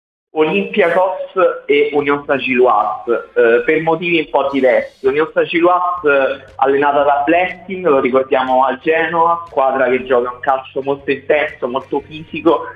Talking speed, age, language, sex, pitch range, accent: 130 wpm, 30-49, Italian, male, 125-160 Hz, native